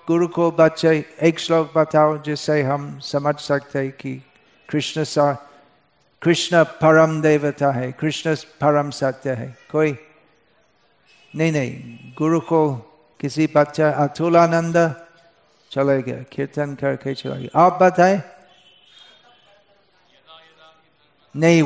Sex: male